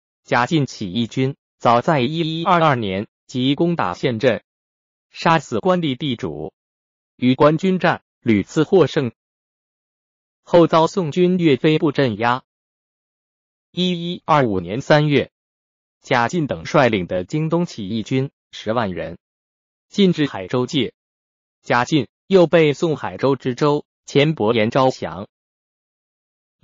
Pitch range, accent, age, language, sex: 95-160 Hz, native, 20-39, Chinese, male